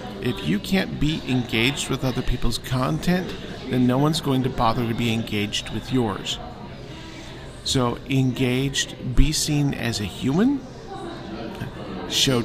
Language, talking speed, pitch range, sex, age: English, 135 wpm, 120-150 Hz, male, 50-69